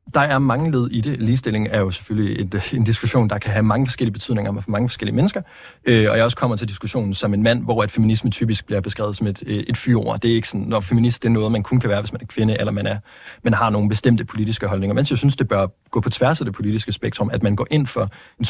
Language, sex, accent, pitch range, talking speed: Danish, male, native, 105-125 Hz, 280 wpm